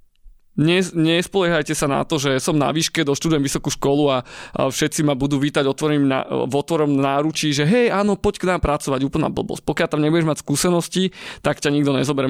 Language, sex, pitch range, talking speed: Slovak, male, 130-155 Hz, 195 wpm